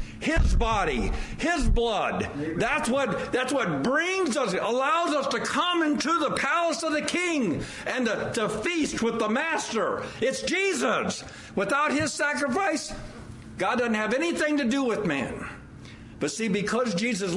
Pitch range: 190-265 Hz